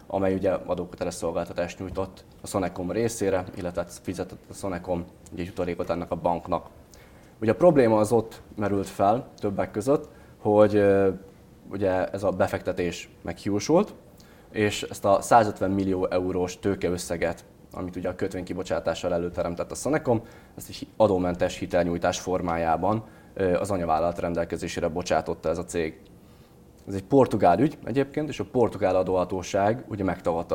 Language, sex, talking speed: Hungarian, male, 135 wpm